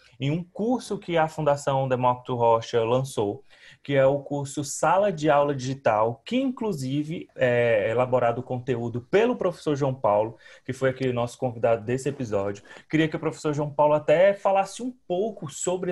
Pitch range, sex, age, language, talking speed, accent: 125-155 Hz, male, 20-39, Portuguese, 170 wpm, Brazilian